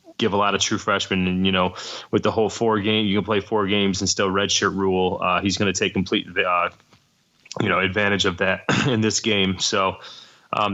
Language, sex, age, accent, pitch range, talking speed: English, male, 20-39, American, 95-110 Hz, 225 wpm